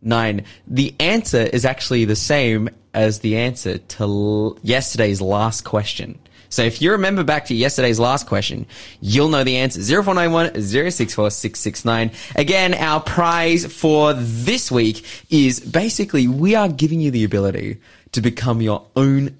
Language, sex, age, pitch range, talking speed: English, male, 20-39, 110-155 Hz, 150 wpm